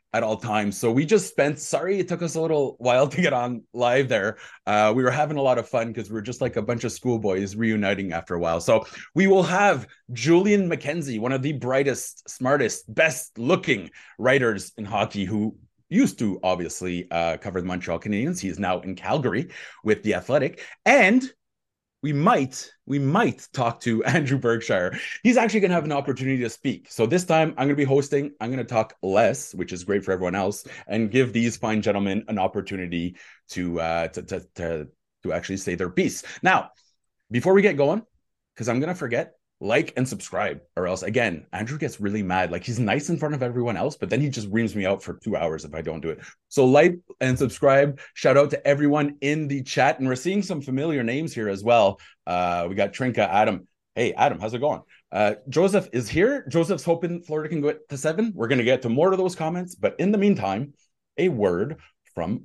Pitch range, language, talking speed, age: 105-150 Hz, English, 220 wpm, 30-49